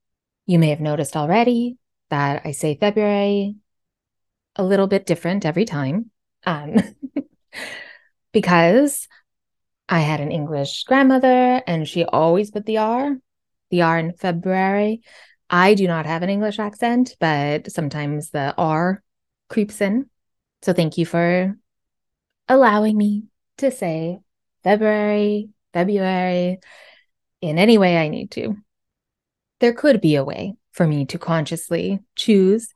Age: 20-39